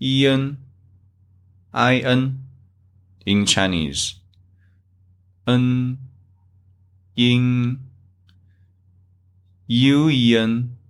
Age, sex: 20-39, male